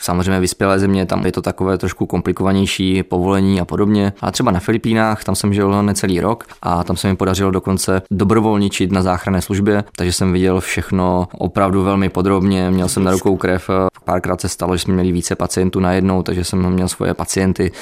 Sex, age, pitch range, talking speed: male, 20-39, 95-100 Hz, 190 wpm